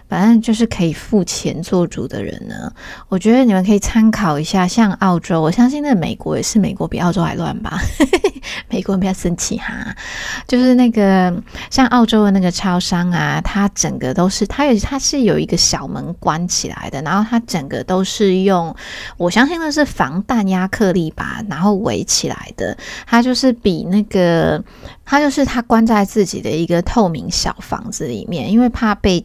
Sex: female